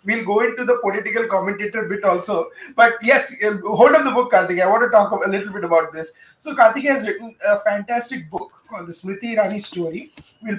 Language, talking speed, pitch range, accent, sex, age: English, 210 wpm, 180-235 Hz, Indian, male, 20-39